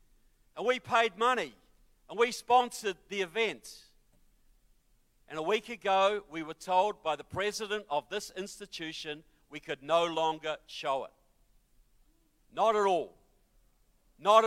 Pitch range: 180-225 Hz